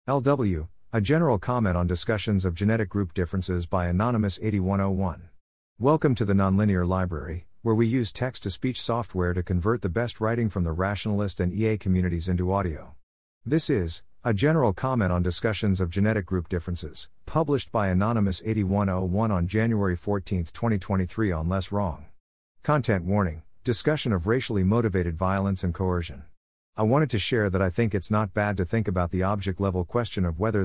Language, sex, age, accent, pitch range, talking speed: English, male, 50-69, American, 90-110 Hz, 170 wpm